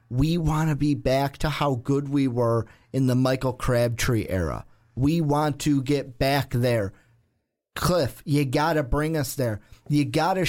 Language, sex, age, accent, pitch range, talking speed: English, male, 30-49, American, 125-160 Hz, 175 wpm